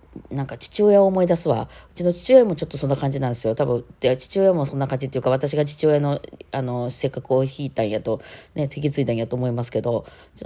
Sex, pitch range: female, 115-160 Hz